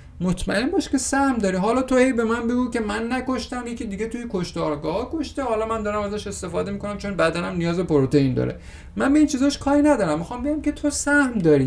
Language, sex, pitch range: Persian, male, 140-205 Hz